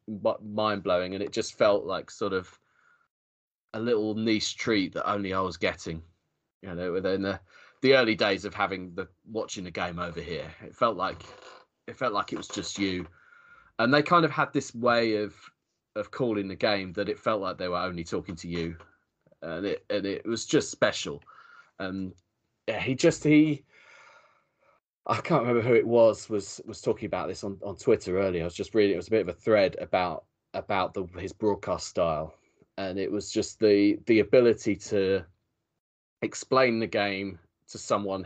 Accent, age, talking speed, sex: British, 30-49, 190 wpm, male